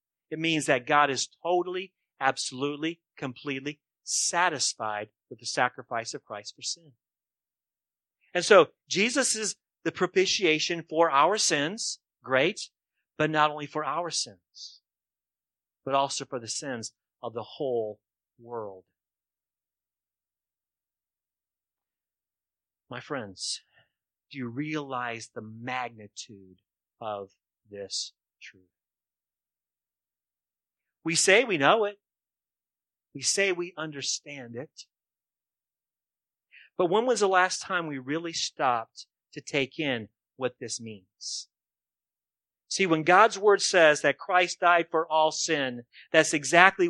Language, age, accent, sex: English, 40-59, American, male